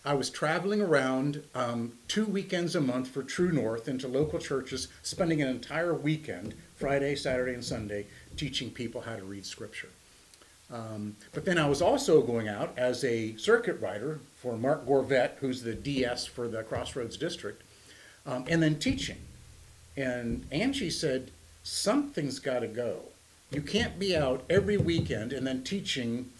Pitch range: 115-155 Hz